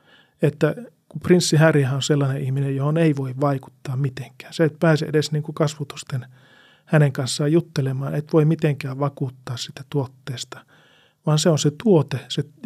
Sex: male